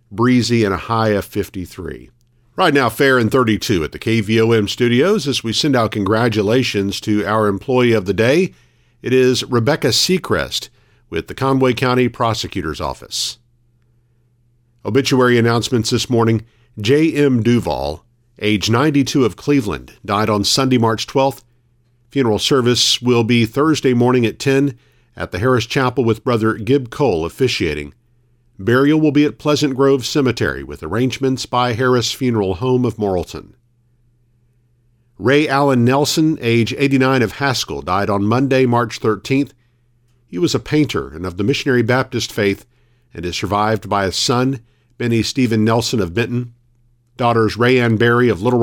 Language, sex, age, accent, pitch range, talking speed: English, male, 50-69, American, 110-130 Hz, 150 wpm